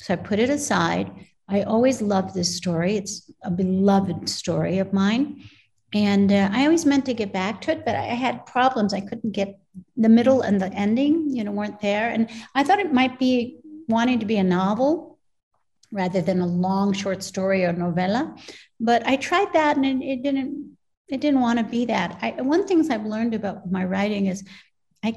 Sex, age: female, 60-79